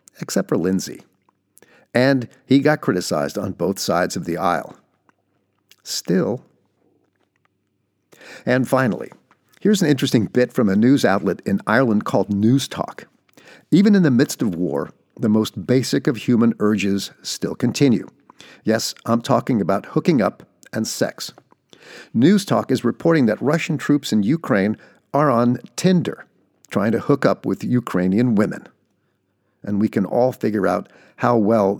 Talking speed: 145 wpm